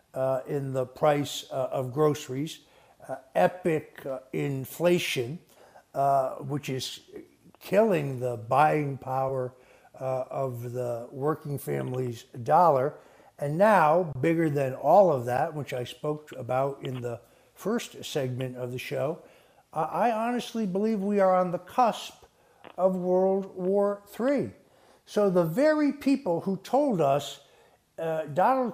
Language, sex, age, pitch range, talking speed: English, male, 60-79, 140-195 Hz, 135 wpm